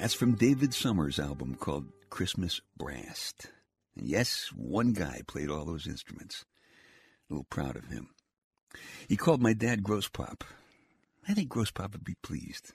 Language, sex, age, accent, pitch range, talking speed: English, male, 60-79, American, 80-120 Hz, 165 wpm